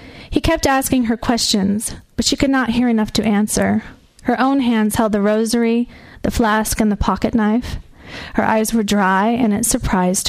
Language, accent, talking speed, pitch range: English, American, 185 wpm, 210-250 Hz